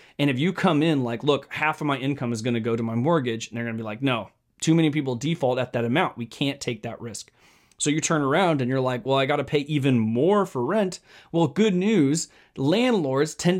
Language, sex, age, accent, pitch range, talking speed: English, male, 30-49, American, 125-170 Hz, 255 wpm